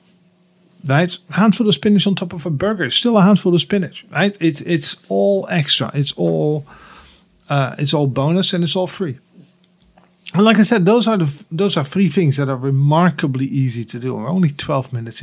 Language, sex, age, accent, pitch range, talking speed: English, male, 50-69, Dutch, 140-195 Hz, 195 wpm